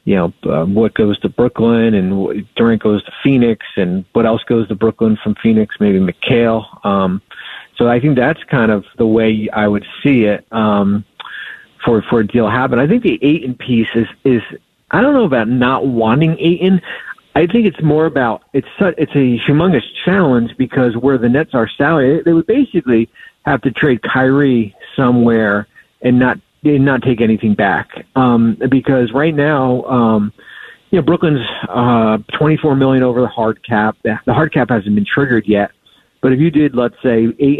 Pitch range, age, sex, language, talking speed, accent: 110-135 Hz, 40-59, male, English, 185 wpm, American